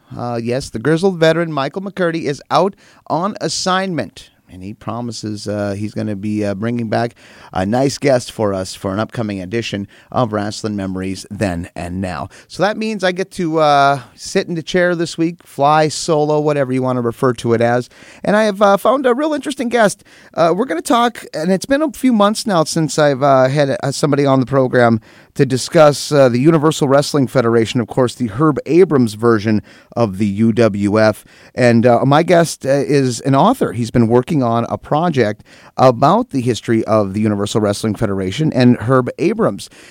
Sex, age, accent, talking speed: male, 30-49, American, 195 wpm